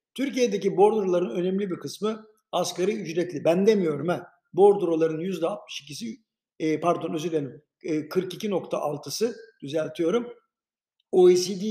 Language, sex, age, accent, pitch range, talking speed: Turkish, male, 60-79, native, 165-205 Hz, 90 wpm